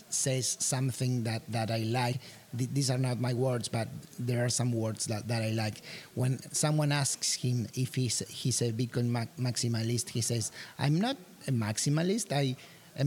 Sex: male